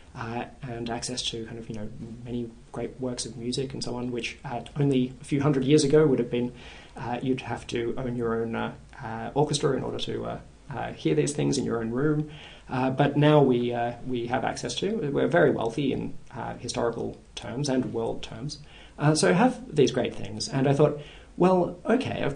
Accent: Australian